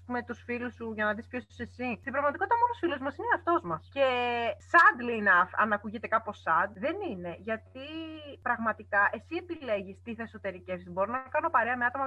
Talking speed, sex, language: 200 wpm, female, Greek